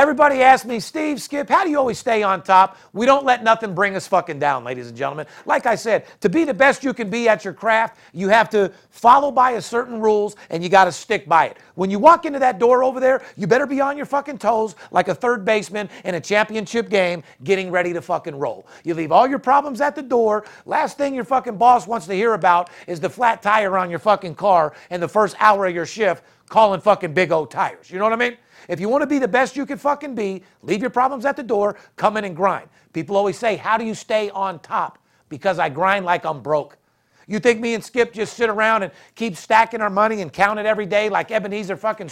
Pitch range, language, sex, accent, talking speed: 185-245 Hz, English, male, American, 255 wpm